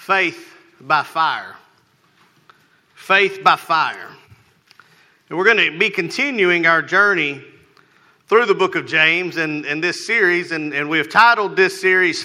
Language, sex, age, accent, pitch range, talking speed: English, male, 40-59, American, 180-230 Hz, 145 wpm